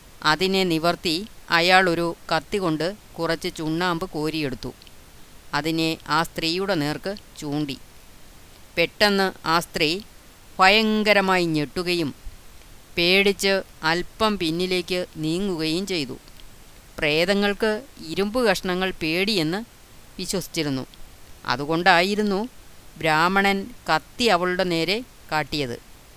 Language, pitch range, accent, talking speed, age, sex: Malayalam, 155-190 Hz, native, 80 wpm, 30-49, female